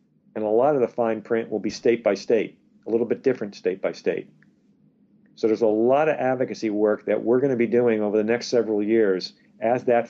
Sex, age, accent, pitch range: male, 50-69, American, 110-135 Hz